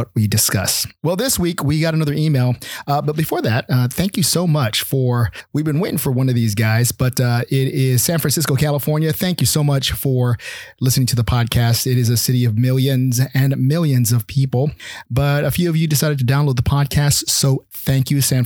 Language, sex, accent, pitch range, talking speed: English, male, American, 125-150 Hz, 220 wpm